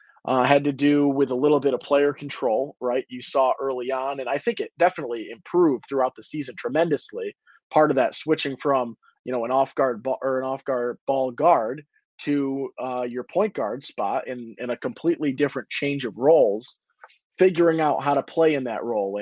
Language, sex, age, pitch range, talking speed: English, male, 20-39, 120-145 Hz, 195 wpm